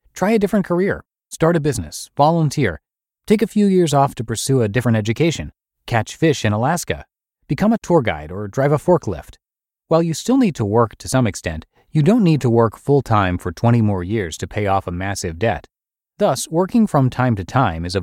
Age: 30-49